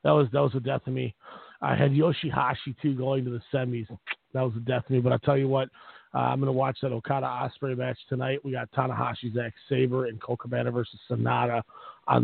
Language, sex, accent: English, male, American